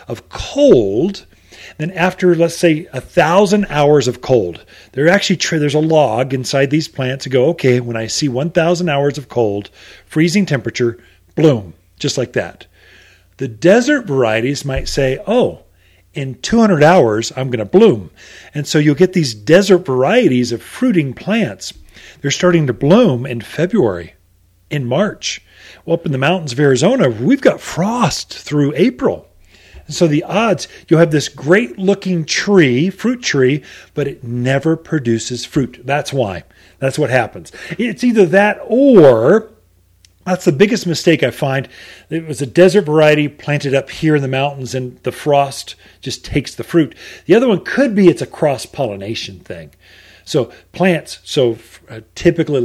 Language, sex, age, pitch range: English, male, 40-59, 125-170 Hz